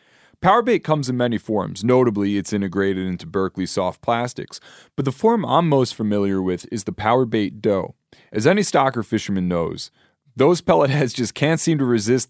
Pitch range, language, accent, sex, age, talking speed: 100-135 Hz, English, American, male, 30-49, 175 wpm